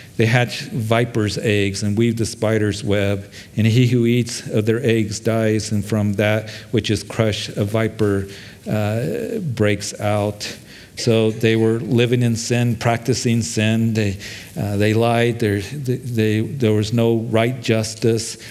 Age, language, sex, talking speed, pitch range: 50-69, English, male, 150 wpm, 105-120 Hz